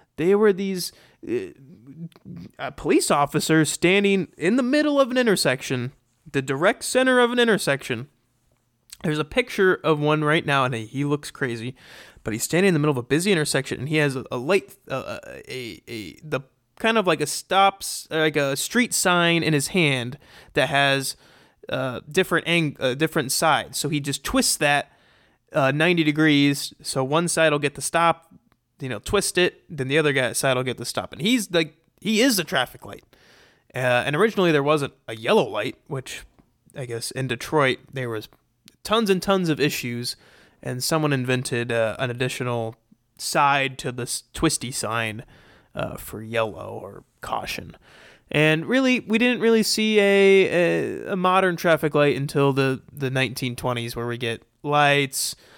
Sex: male